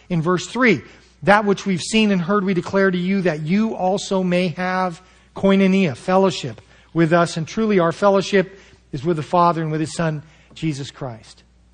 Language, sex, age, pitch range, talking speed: English, male, 40-59, 135-180 Hz, 185 wpm